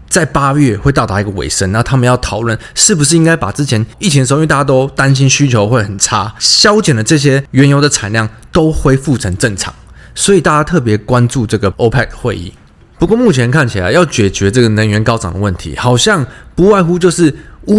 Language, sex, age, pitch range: Chinese, male, 20-39, 110-150 Hz